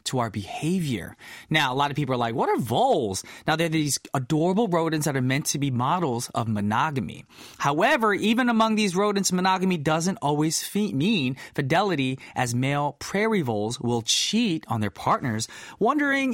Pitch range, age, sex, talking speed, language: 140-210 Hz, 20-39, male, 175 wpm, English